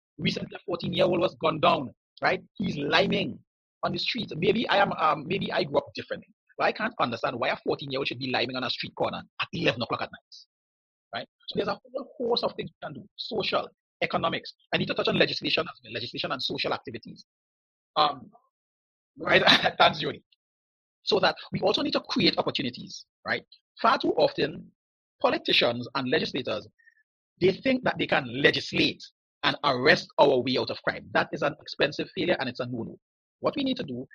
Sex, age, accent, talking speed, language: male, 40-59, Nigerian, 195 wpm, English